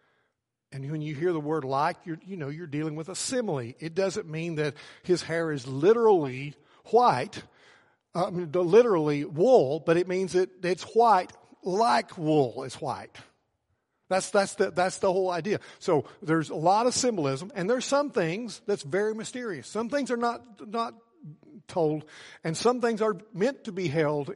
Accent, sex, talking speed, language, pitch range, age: American, male, 175 wpm, English, 140-180 Hz, 60-79